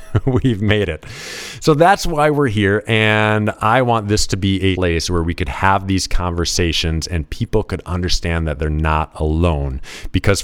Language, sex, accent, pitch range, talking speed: English, male, American, 85-105 Hz, 180 wpm